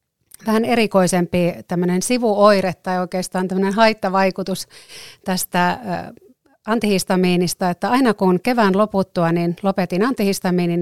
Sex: female